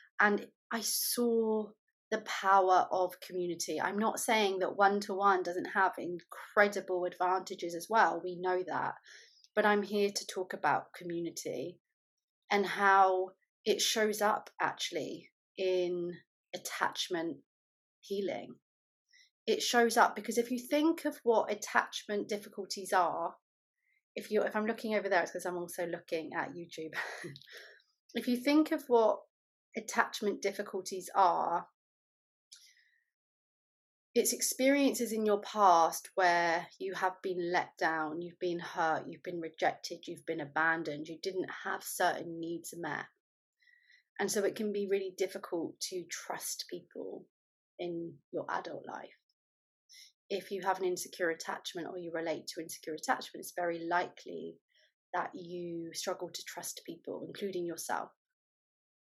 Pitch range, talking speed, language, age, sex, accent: 175-225 Hz, 140 wpm, English, 30-49, female, British